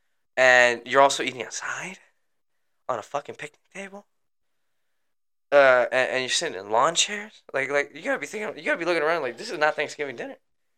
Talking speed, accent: 195 wpm, American